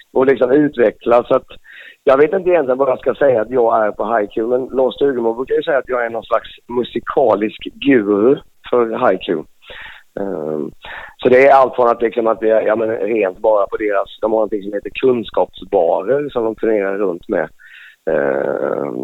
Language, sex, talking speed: Swedish, male, 185 wpm